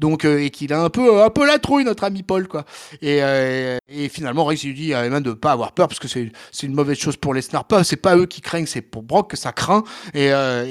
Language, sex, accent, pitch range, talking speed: French, male, French, 150-225 Hz, 295 wpm